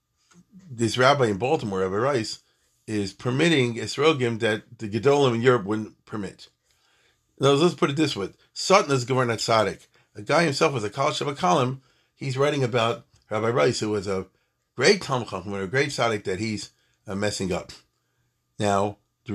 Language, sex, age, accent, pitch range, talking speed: English, male, 50-69, American, 105-130 Hz, 170 wpm